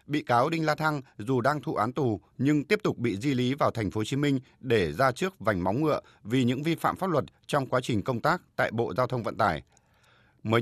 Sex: male